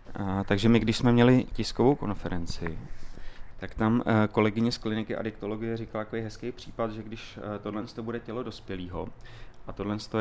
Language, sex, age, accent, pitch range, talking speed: Czech, male, 30-49, native, 95-110 Hz, 165 wpm